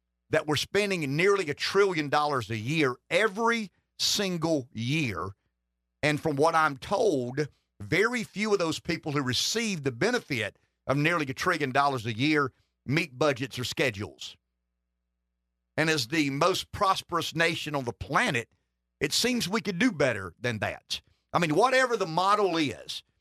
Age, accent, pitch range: 50-69, American, 120-175 Hz